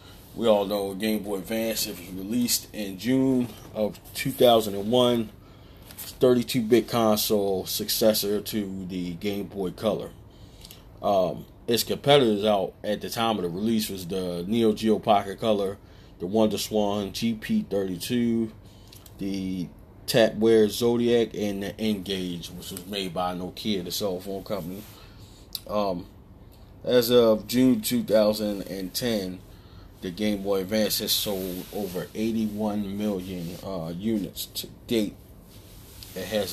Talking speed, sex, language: 125 wpm, male, English